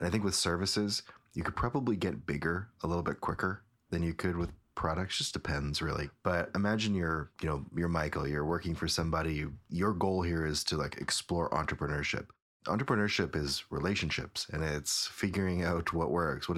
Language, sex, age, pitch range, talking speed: English, male, 30-49, 75-85 Hz, 190 wpm